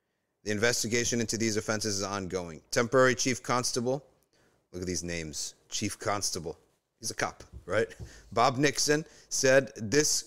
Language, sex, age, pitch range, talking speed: English, male, 30-49, 100-130 Hz, 140 wpm